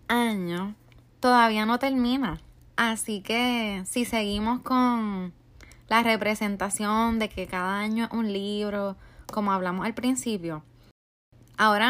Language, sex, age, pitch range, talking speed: Spanish, female, 20-39, 180-240 Hz, 115 wpm